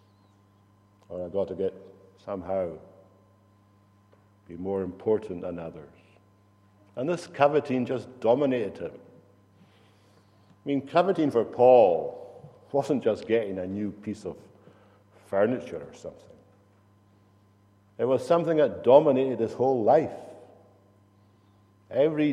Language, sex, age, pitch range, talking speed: English, male, 60-79, 100-110 Hz, 110 wpm